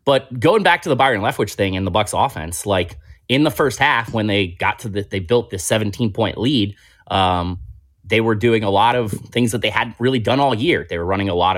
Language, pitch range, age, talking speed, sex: English, 100-130 Hz, 30-49, 245 wpm, male